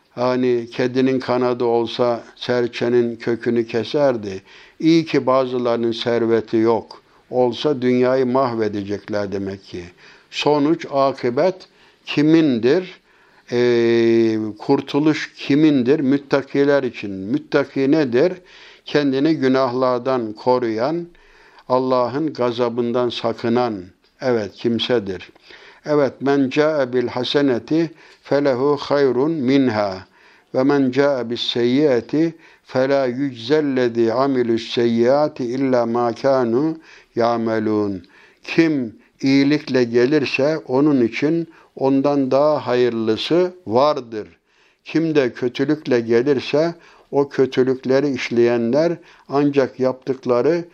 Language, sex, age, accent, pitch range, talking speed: Turkish, male, 60-79, native, 115-140 Hz, 85 wpm